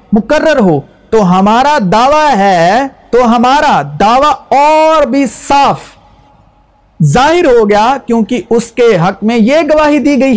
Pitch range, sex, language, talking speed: 215-280 Hz, male, Urdu, 140 wpm